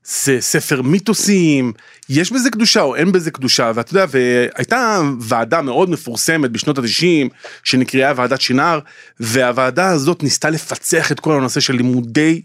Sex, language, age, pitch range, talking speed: male, Hebrew, 30-49, 130-185 Hz, 140 wpm